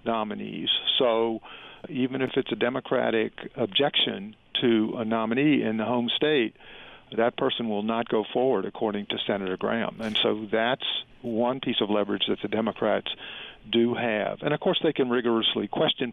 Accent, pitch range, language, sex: American, 110-130 Hz, English, male